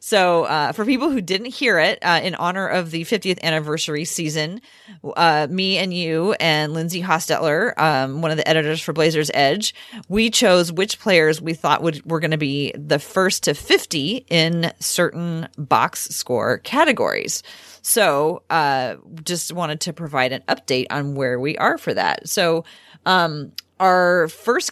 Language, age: English, 30-49